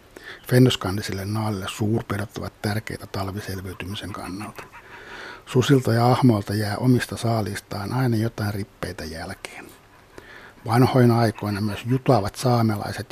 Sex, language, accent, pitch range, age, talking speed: male, Finnish, native, 105-125 Hz, 60-79, 100 wpm